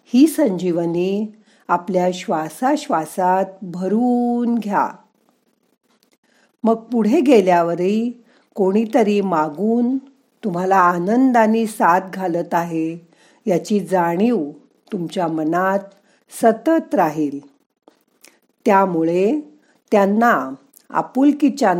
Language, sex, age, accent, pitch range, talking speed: Marathi, female, 50-69, native, 185-240 Hz, 70 wpm